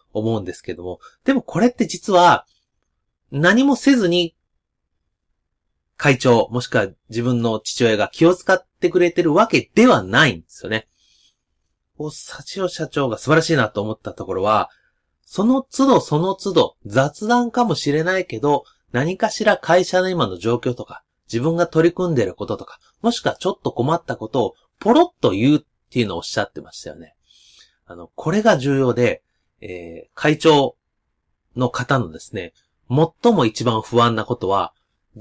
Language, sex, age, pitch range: Japanese, male, 30-49, 110-185 Hz